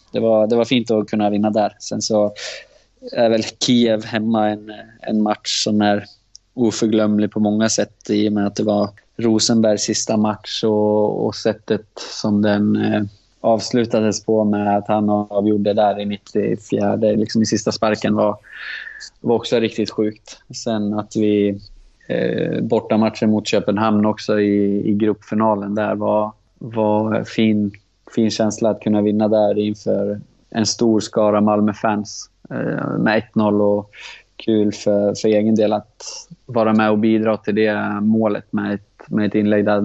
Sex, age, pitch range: male, 20-39, 105-110 Hz